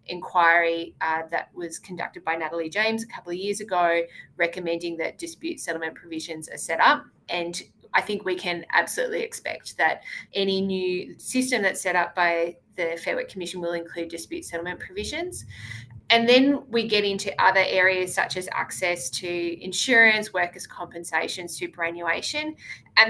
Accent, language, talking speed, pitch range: Australian, English, 160 wpm, 170-200 Hz